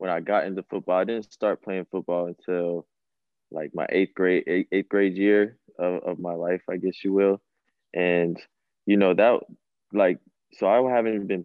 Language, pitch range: English, 85-100 Hz